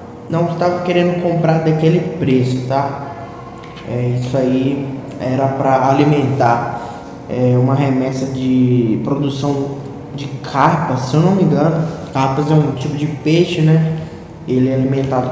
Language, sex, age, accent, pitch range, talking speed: Portuguese, male, 20-39, Brazilian, 125-165 Hz, 135 wpm